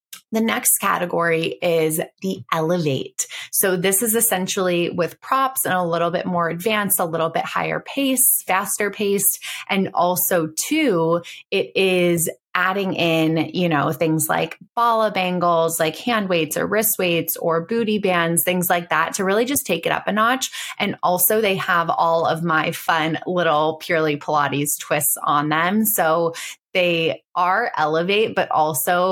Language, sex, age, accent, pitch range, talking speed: English, female, 20-39, American, 160-195 Hz, 160 wpm